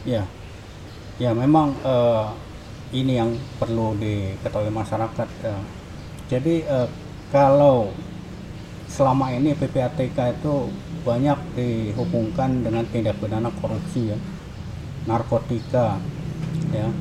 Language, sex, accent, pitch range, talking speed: Indonesian, male, native, 110-150 Hz, 90 wpm